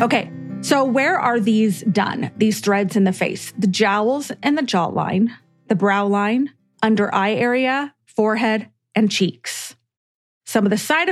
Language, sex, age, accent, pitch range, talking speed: English, female, 30-49, American, 195-235 Hz, 155 wpm